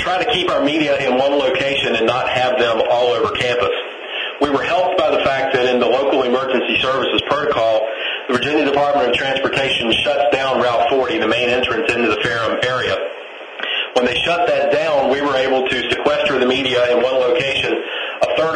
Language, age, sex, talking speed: English, 40-59, male, 195 wpm